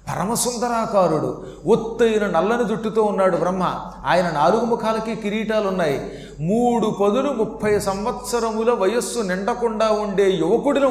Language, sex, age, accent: Telugu, male, 40-59, native